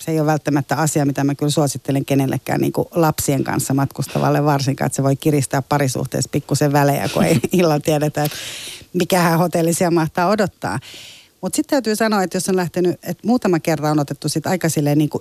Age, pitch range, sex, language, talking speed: 30-49, 140-170 Hz, female, Finnish, 180 wpm